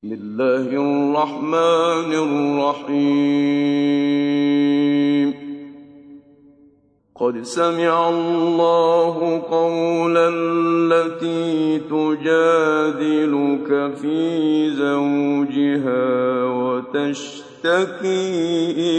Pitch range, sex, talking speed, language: 145-190 Hz, male, 40 wpm, Arabic